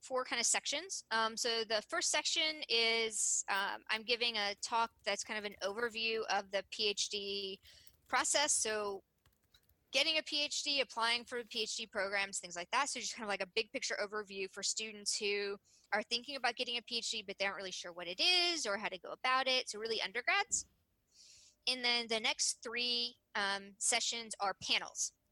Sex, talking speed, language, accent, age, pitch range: female, 185 wpm, English, American, 20-39, 205-255 Hz